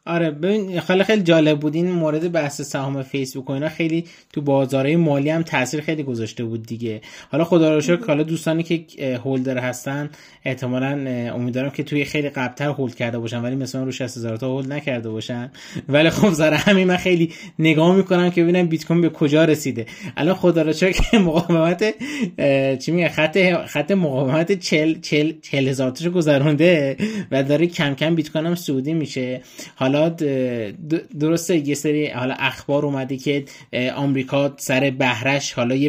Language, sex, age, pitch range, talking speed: Persian, male, 20-39, 135-170 Hz, 160 wpm